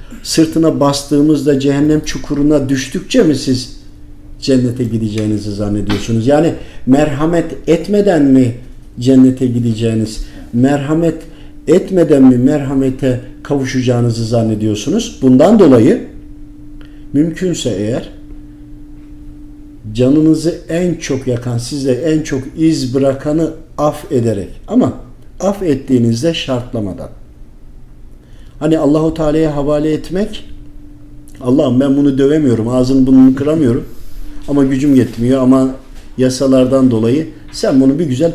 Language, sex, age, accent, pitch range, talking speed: Turkish, male, 50-69, native, 115-150 Hz, 100 wpm